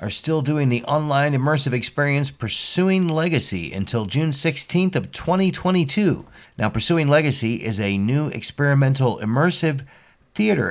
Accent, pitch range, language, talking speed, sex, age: American, 105-145 Hz, English, 130 wpm, male, 40-59